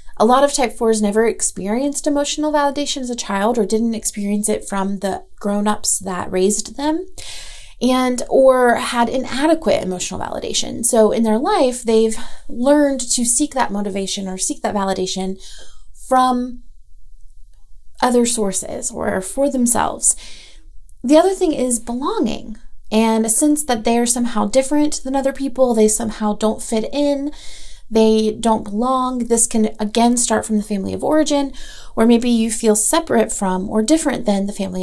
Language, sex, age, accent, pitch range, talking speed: English, female, 30-49, American, 215-270 Hz, 155 wpm